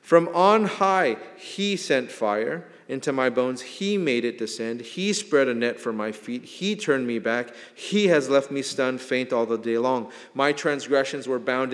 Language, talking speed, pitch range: English, 195 wpm, 115-140 Hz